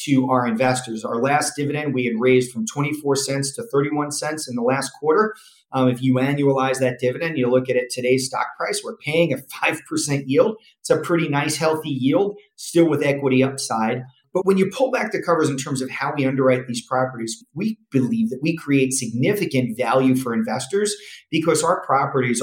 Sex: male